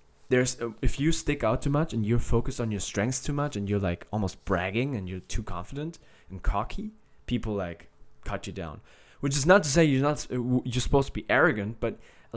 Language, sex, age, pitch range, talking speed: German, male, 20-39, 105-135 Hz, 220 wpm